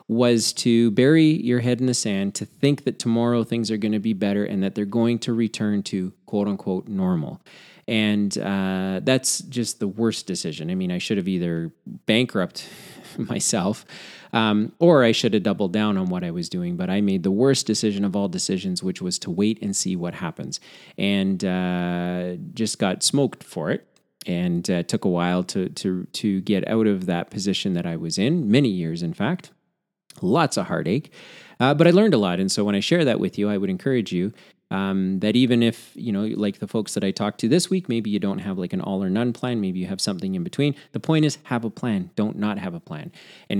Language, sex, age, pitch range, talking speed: English, male, 30-49, 100-140 Hz, 225 wpm